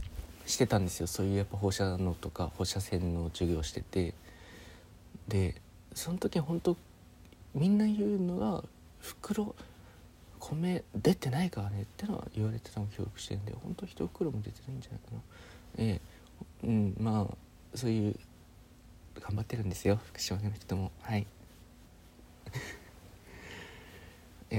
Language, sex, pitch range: Japanese, male, 85-120 Hz